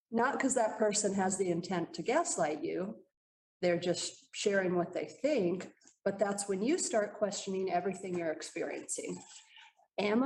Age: 30-49